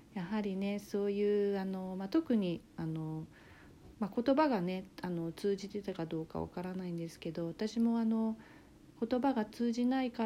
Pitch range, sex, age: 165-205 Hz, female, 40-59